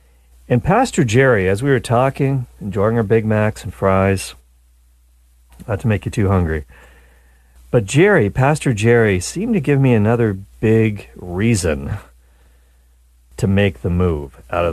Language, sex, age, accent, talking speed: English, male, 40-59, American, 145 wpm